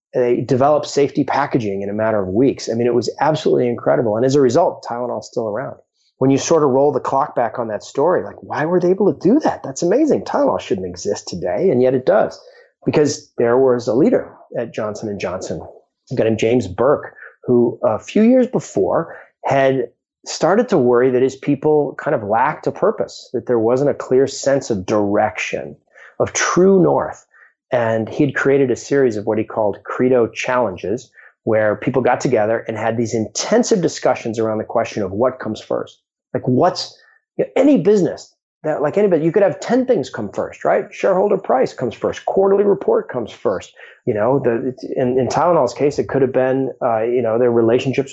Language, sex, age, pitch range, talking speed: English, male, 30-49, 115-155 Hz, 195 wpm